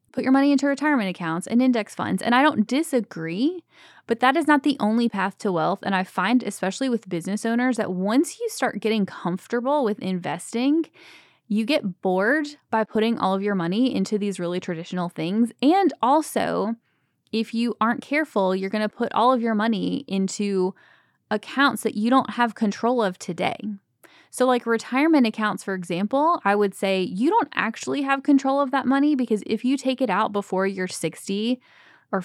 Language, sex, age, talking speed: English, female, 20-39, 190 wpm